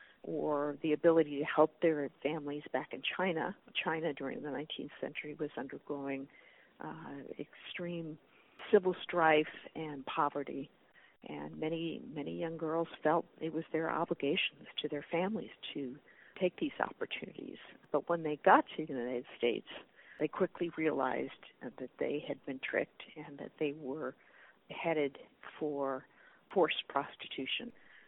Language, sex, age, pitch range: English, female, 50-69, 150-180 Hz